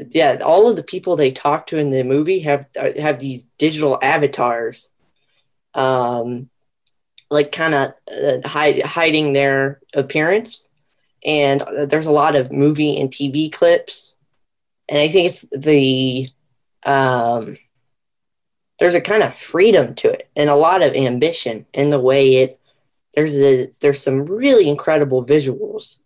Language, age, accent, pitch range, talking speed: English, 10-29, American, 130-150 Hz, 140 wpm